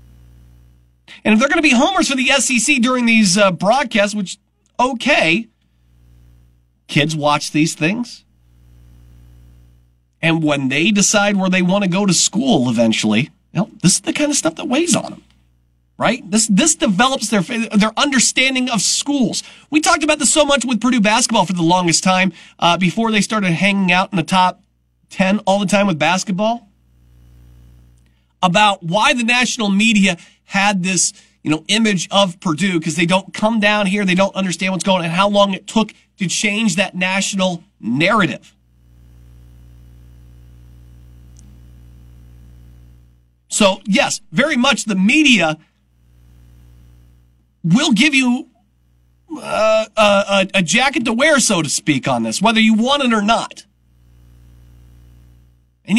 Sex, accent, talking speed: male, American, 150 wpm